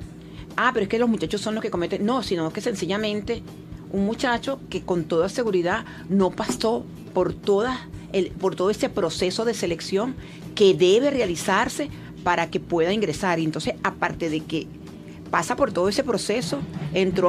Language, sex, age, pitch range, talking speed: Spanish, female, 40-59, 170-225 Hz, 170 wpm